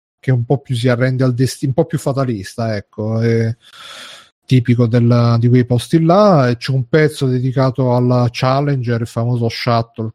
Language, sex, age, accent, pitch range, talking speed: Italian, male, 30-49, native, 115-135 Hz, 165 wpm